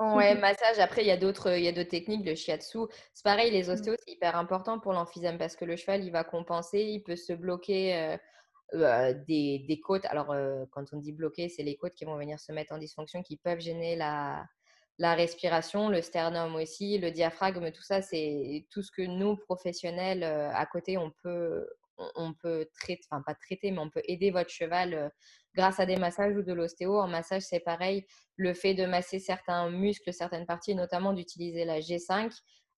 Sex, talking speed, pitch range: female, 210 wpm, 165-195 Hz